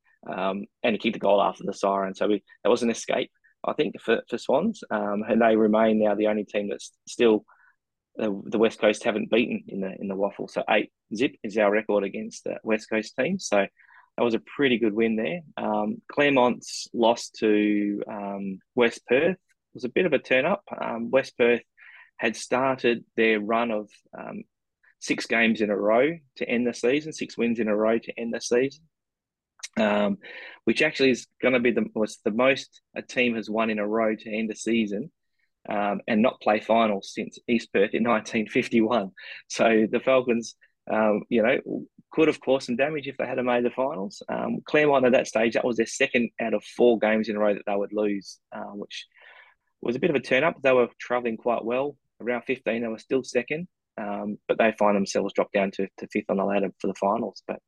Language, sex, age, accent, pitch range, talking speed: English, male, 20-39, Australian, 105-125 Hz, 215 wpm